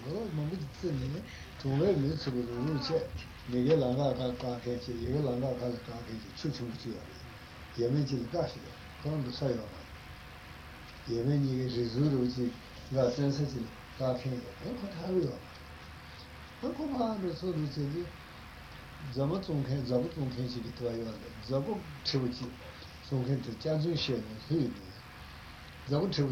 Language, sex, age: Italian, male, 60-79